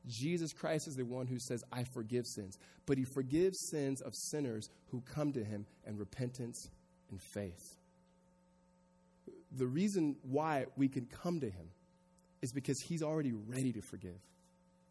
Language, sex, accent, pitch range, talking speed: English, male, American, 130-195 Hz, 155 wpm